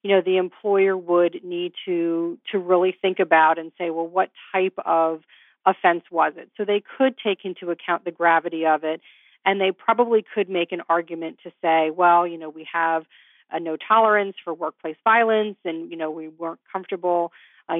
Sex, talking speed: female, 190 wpm